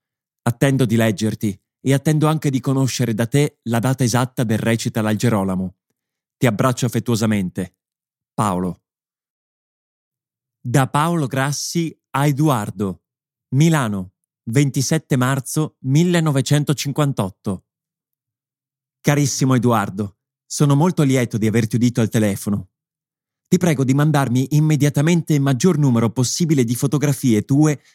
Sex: male